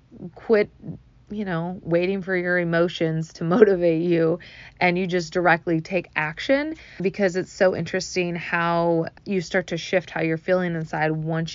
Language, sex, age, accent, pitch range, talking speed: English, female, 20-39, American, 155-180 Hz, 155 wpm